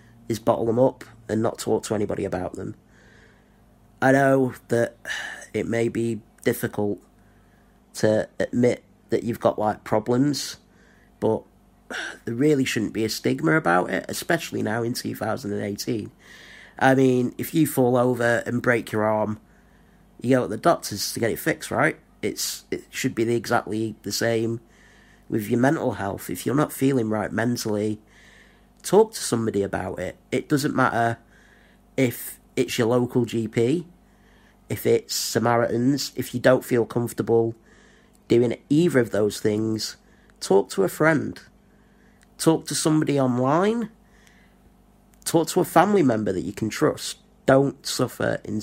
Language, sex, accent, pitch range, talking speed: English, male, British, 110-130 Hz, 150 wpm